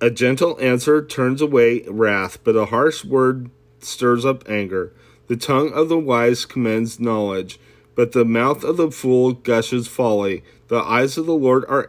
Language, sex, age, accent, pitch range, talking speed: English, male, 30-49, American, 100-130 Hz, 170 wpm